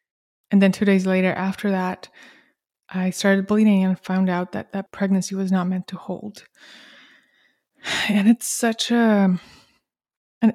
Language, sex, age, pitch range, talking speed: English, female, 20-39, 185-210 Hz, 140 wpm